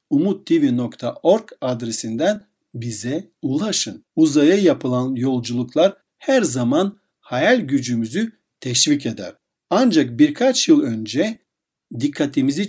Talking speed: 85 wpm